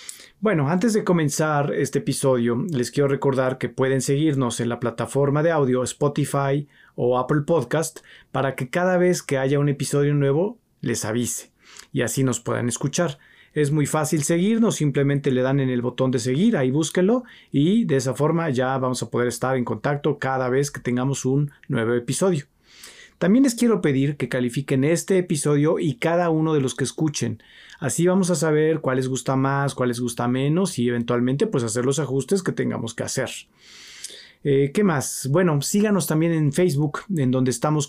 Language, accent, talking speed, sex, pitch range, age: Spanish, Mexican, 185 wpm, male, 130-160 Hz, 40-59